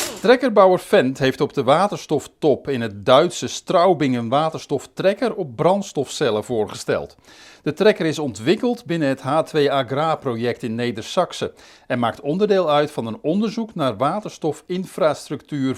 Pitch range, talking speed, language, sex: 125-175 Hz, 130 wpm, Dutch, male